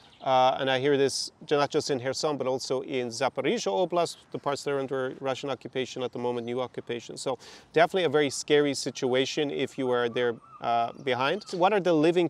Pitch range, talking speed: 125-150 Hz, 205 wpm